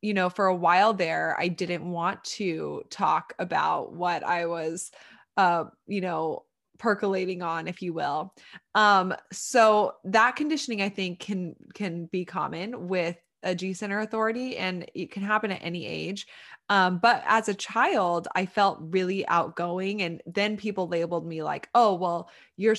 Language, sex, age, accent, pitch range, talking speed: English, female, 20-39, American, 175-210 Hz, 165 wpm